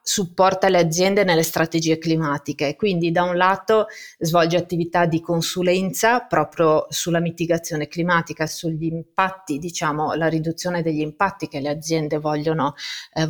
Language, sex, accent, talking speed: Italian, female, native, 135 wpm